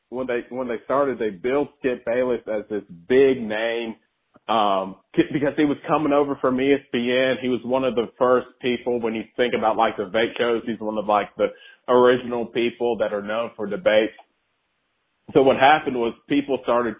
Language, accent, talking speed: English, American, 195 wpm